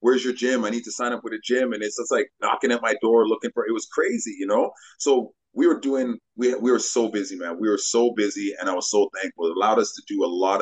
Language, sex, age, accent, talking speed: English, male, 30-49, American, 295 wpm